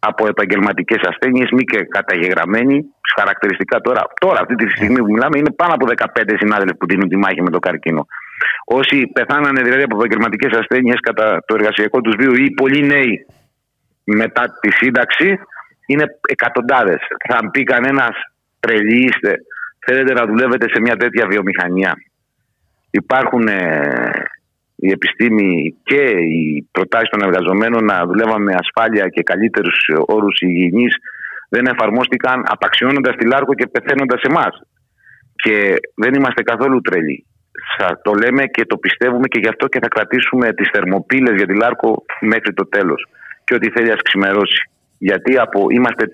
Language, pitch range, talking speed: Greek, 95-130 Hz, 150 wpm